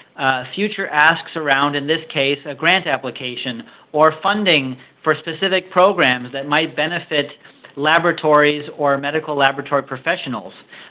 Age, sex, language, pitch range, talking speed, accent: 40-59, male, English, 140-170 Hz, 125 wpm, American